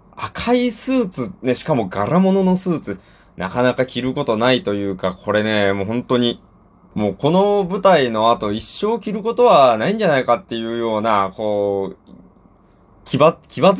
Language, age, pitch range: Japanese, 20-39, 100-145 Hz